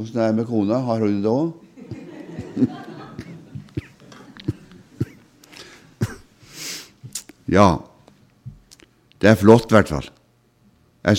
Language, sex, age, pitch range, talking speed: Danish, male, 60-79, 85-110 Hz, 75 wpm